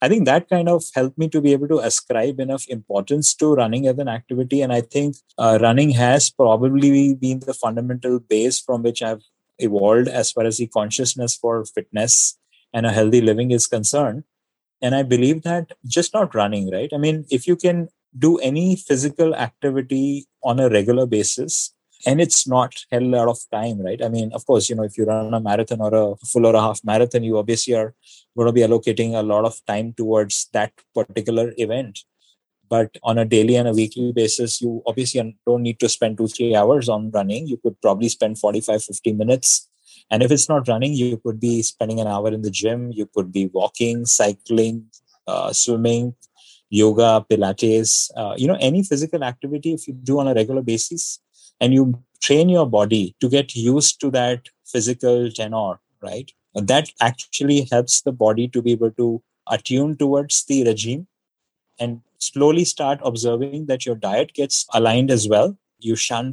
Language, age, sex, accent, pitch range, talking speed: English, 20-39, male, Indian, 115-135 Hz, 190 wpm